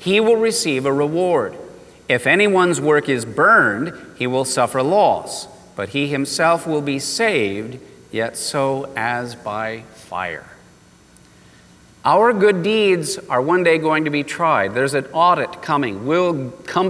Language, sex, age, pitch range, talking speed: English, male, 40-59, 135-175 Hz, 145 wpm